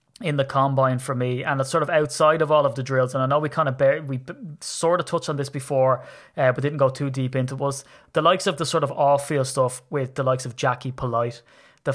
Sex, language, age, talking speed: male, English, 20-39, 265 wpm